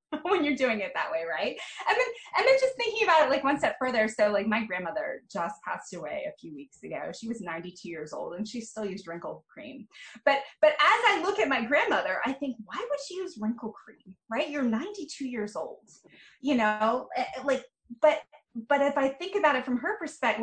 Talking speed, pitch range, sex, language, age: 220 wpm, 215-300 Hz, female, English, 20-39